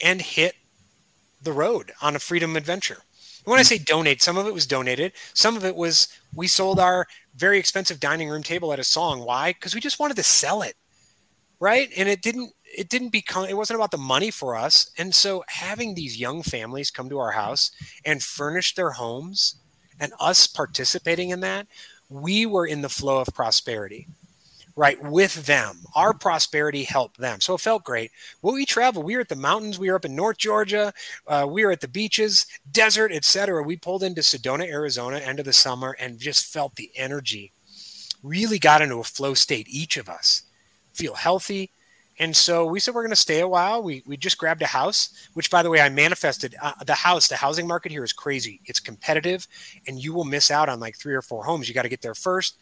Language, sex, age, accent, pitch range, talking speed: English, male, 30-49, American, 140-190 Hz, 215 wpm